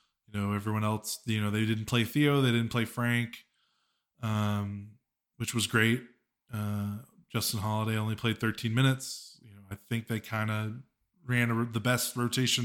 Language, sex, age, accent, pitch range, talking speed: English, male, 20-39, American, 110-130 Hz, 170 wpm